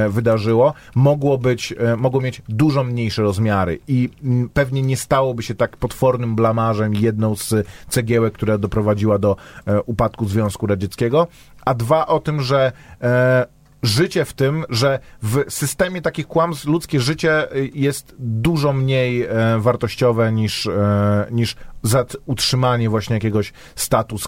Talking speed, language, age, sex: 125 wpm, Polish, 30-49, male